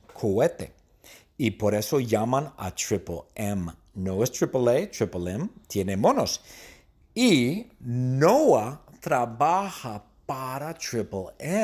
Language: Spanish